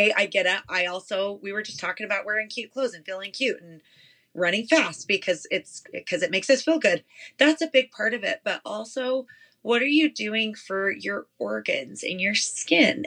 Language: English